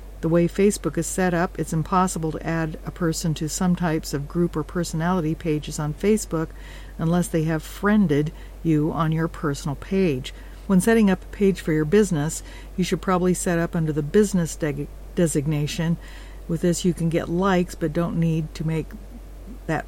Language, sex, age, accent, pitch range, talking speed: English, female, 50-69, American, 155-185 Hz, 185 wpm